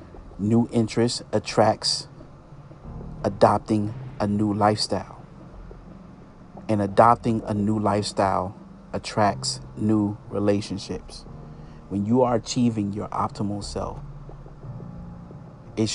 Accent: American